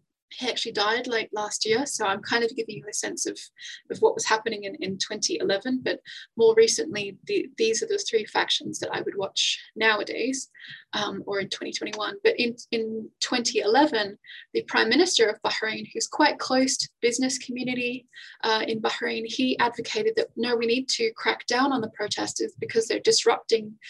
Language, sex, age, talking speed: English, female, 20-39, 185 wpm